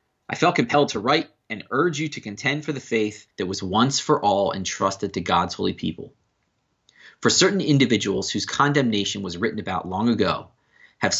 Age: 30-49